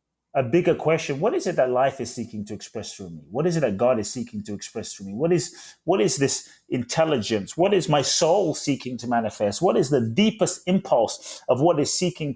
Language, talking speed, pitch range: English, 230 wpm, 120-155 Hz